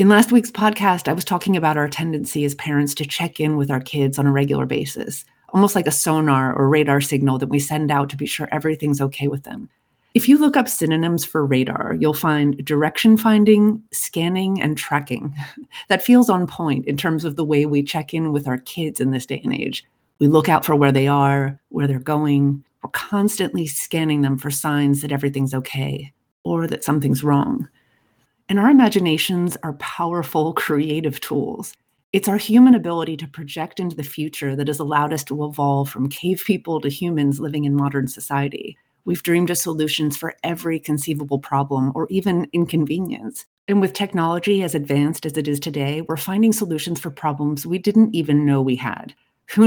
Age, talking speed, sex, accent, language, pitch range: 30-49, 195 wpm, female, American, English, 140-170 Hz